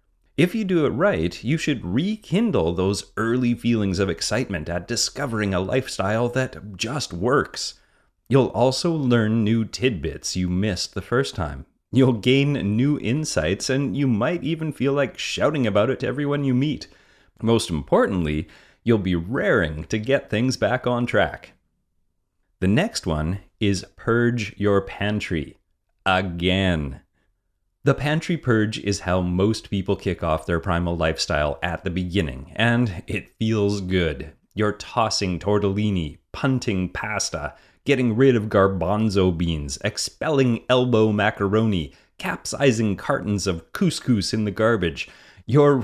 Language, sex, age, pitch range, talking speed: English, male, 30-49, 90-125 Hz, 140 wpm